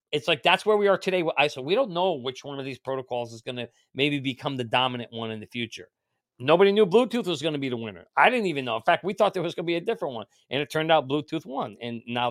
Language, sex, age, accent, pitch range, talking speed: English, male, 40-59, American, 125-180 Hz, 290 wpm